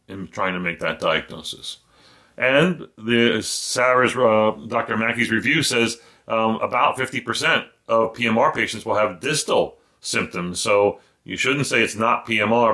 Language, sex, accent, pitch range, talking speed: English, male, American, 100-115 Hz, 145 wpm